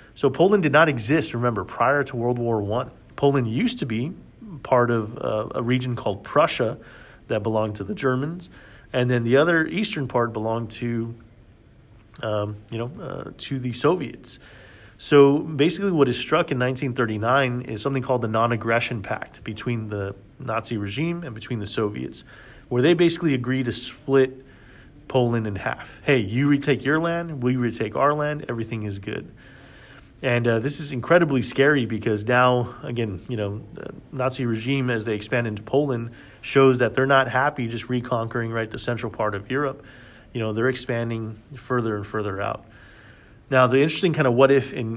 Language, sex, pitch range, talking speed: English, male, 115-135 Hz, 175 wpm